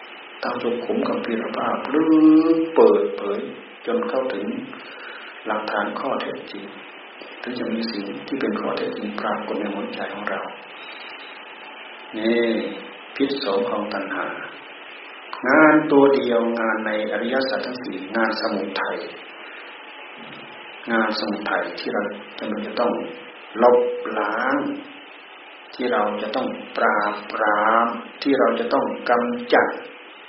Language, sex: Thai, male